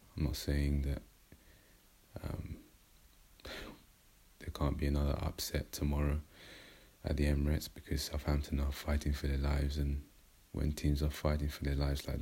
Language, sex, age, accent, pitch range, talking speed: English, male, 20-39, British, 75-80 Hz, 145 wpm